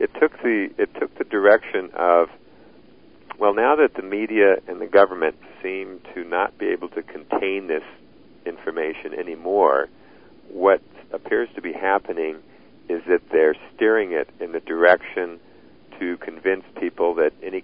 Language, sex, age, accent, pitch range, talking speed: English, male, 50-69, American, 315-430 Hz, 150 wpm